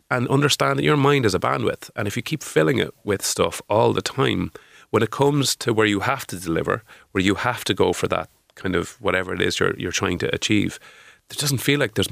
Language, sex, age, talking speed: English, male, 30-49, 250 wpm